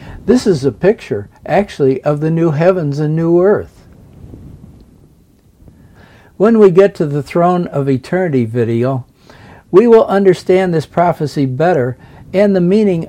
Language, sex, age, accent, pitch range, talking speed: English, male, 60-79, American, 135-190 Hz, 140 wpm